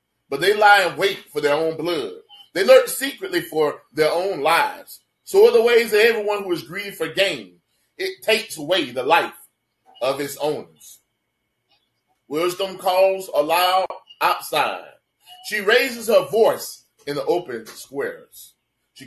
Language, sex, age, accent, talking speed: English, male, 30-49, American, 150 wpm